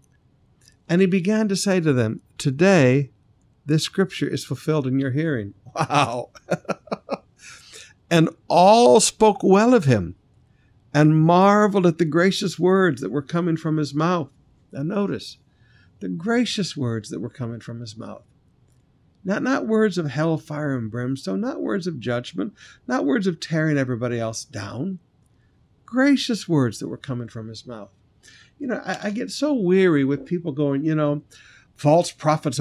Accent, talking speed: American, 160 wpm